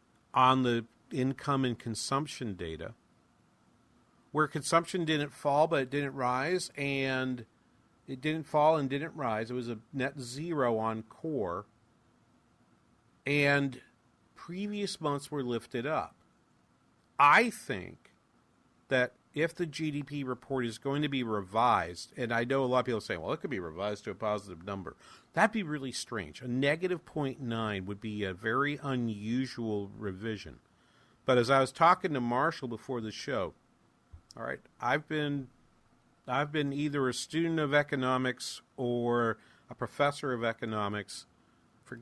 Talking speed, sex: 150 wpm, male